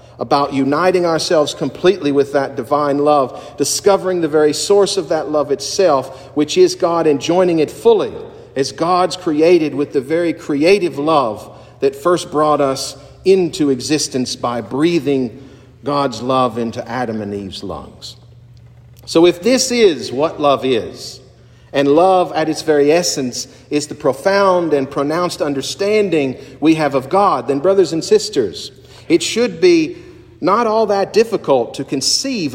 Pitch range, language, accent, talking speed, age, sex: 135-185 Hz, English, American, 150 wpm, 50-69, male